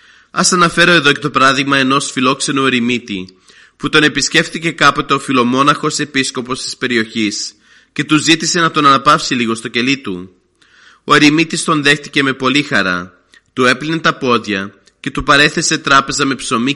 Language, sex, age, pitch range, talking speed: Greek, male, 30-49, 115-150 Hz, 160 wpm